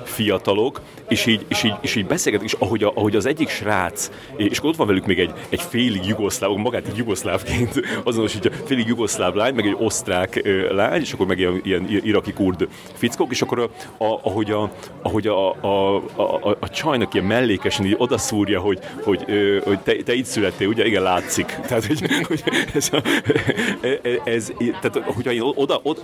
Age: 30-49